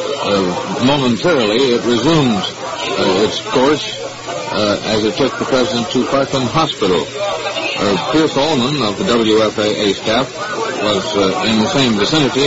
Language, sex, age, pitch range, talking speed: English, male, 50-69, 110-135 Hz, 140 wpm